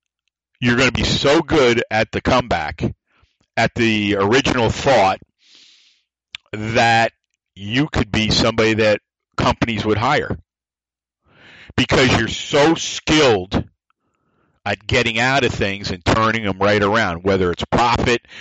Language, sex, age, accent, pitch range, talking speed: English, male, 50-69, American, 100-125 Hz, 125 wpm